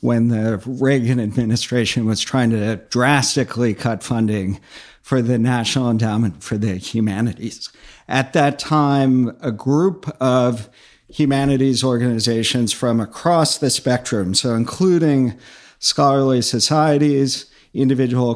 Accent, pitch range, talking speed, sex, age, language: American, 110-130 Hz, 110 wpm, male, 50-69, English